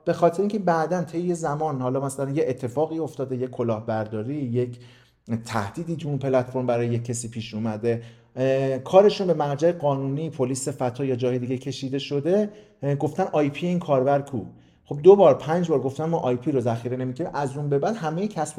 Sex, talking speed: male, 180 wpm